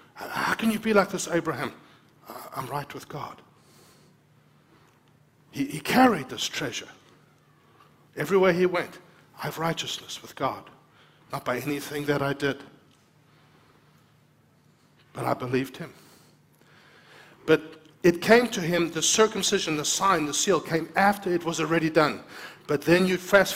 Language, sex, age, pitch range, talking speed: English, male, 60-79, 150-190 Hz, 140 wpm